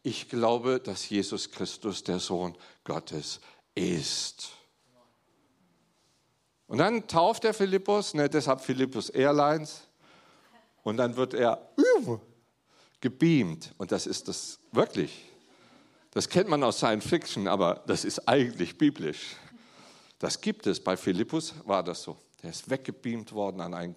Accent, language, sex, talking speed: German, German, male, 135 wpm